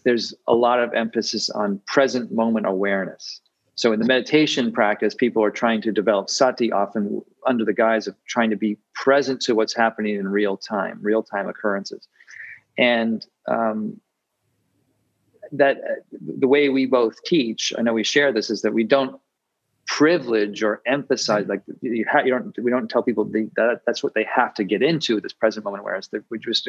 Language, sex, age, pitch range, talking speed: English, male, 40-59, 105-130 Hz, 185 wpm